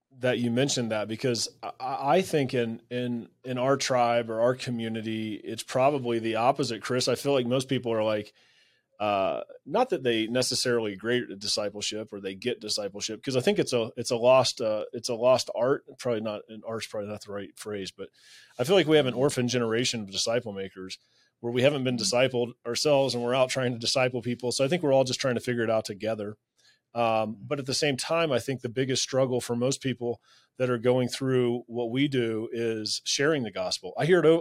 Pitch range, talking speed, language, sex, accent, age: 115-135 Hz, 220 wpm, English, male, American, 30-49